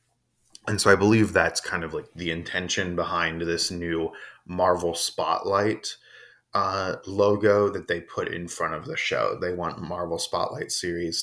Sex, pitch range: male, 90-120 Hz